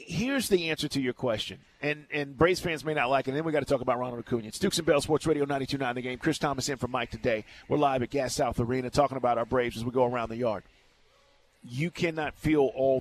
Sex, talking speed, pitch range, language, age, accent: male, 265 wpm, 130-185 Hz, English, 40-59, American